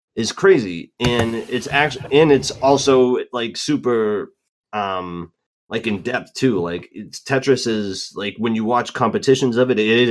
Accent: American